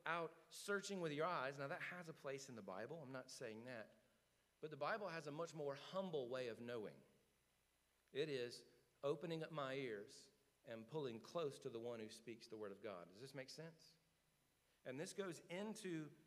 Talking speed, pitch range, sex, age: 200 wpm, 130-165 Hz, male, 40-59